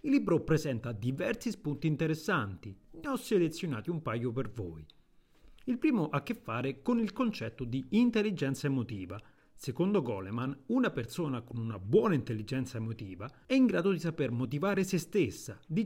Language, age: Italian, 40-59